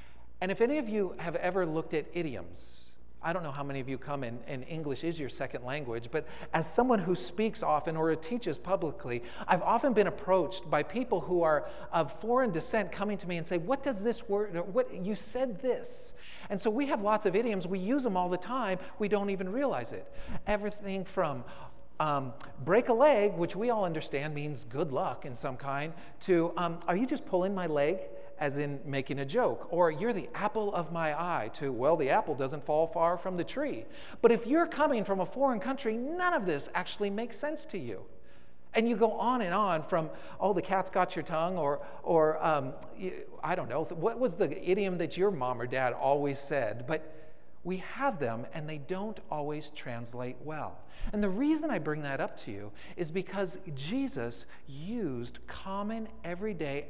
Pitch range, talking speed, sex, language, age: 150-210 Hz, 205 wpm, male, English, 40-59